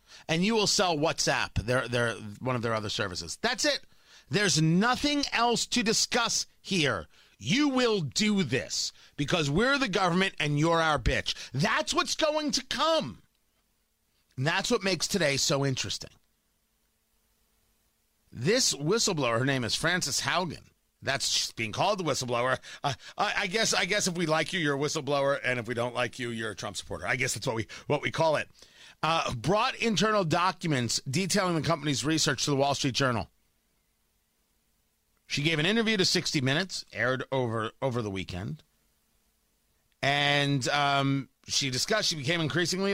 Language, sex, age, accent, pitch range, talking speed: English, male, 40-59, American, 135-195 Hz, 170 wpm